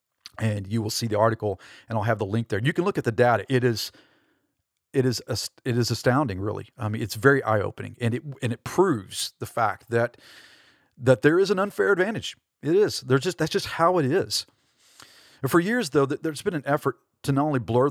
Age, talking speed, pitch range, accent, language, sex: 40-59, 230 wpm, 115-145 Hz, American, English, male